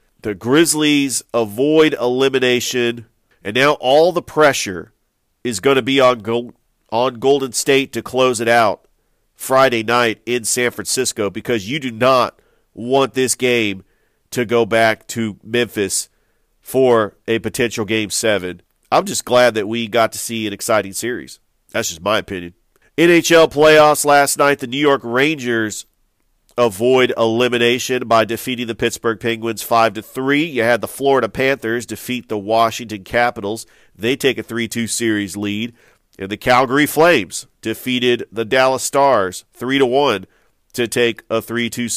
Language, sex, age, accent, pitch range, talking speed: English, male, 40-59, American, 115-135 Hz, 145 wpm